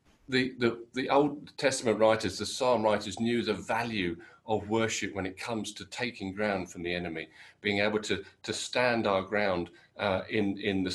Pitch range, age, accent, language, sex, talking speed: 100-120 Hz, 50-69, British, English, male, 185 wpm